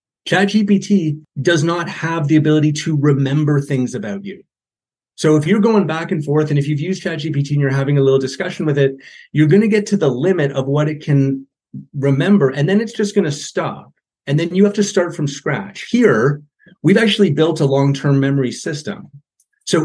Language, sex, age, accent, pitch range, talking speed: English, male, 30-49, American, 135-175 Hz, 205 wpm